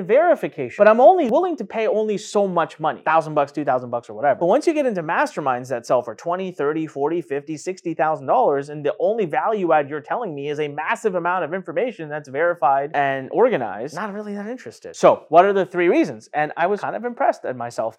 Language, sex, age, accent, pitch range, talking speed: English, male, 30-49, American, 150-220 Hz, 230 wpm